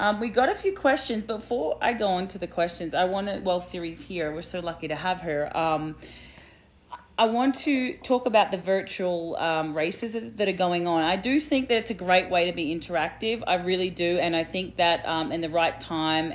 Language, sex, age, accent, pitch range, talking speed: English, female, 30-49, Australian, 155-190 Hz, 230 wpm